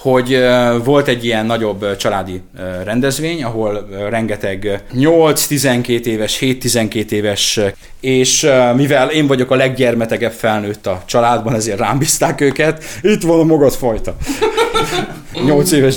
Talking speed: 115 wpm